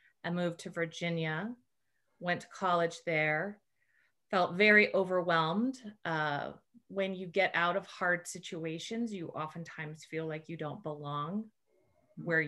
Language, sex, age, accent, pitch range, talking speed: English, female, 30-49, American, 160-195 Hz, 130 wpm